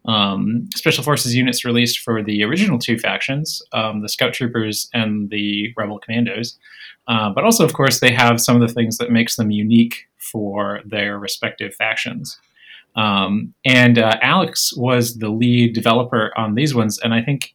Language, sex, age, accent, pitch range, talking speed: English, male, 30-49, American, 105-125 Hz, 175 wpm